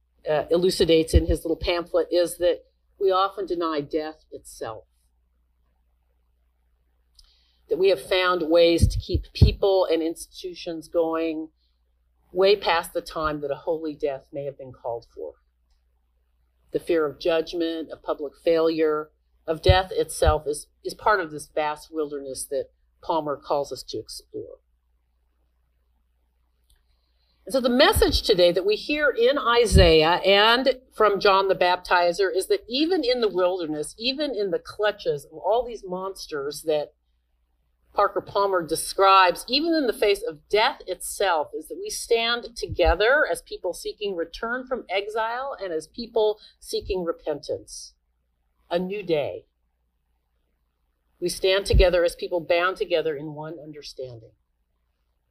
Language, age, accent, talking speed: English, 50-69, American, 140 wpm